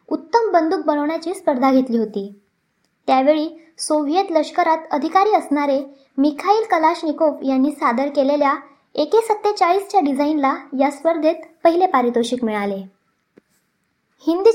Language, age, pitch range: Marathi, 20-39, 275-335 Hz